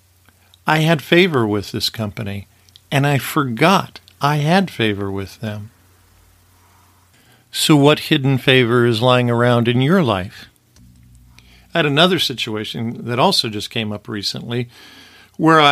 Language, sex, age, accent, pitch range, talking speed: English, male, 50-69, American, 105-145 Hz, 135 wpm